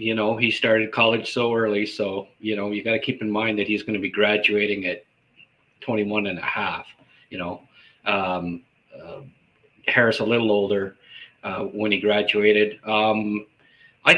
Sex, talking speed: male, 175 wpm